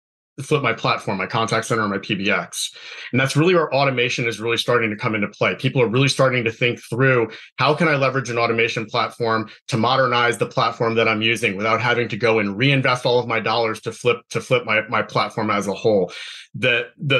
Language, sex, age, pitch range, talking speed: English, male, 30-49, 115-135 Hz, 215 wpm